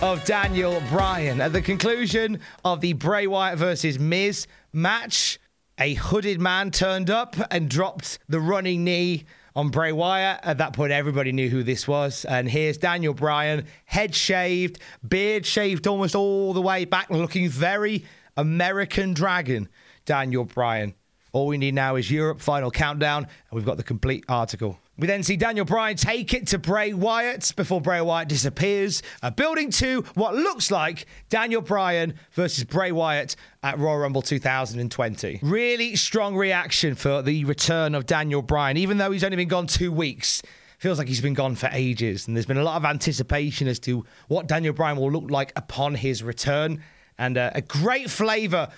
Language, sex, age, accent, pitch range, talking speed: English, male, 30-49, British, 135-190 Hz, 175 wpm